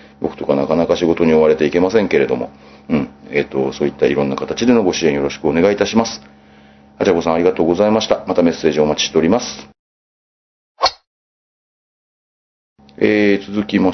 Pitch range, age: 70-100 Hz, 40-59